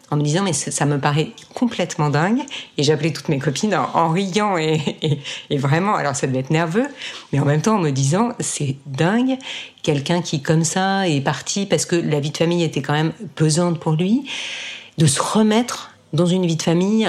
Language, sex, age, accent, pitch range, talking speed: French, female, 50-69, French, 150-195 Hz, 215 wpm